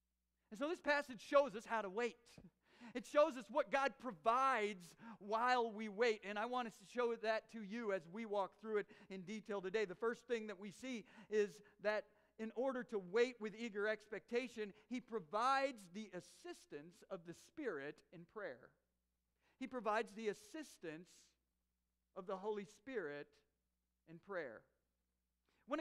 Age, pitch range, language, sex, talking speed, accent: 50-69, 165-240 Hz, English, male, 165 wpm, American